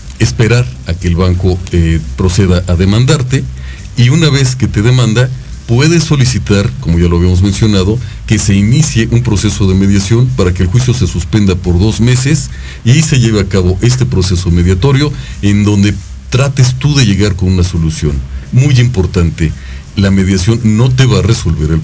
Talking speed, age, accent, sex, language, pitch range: 180 wpm, 40-59, Mexican, male, Spanish, 90-110 Hz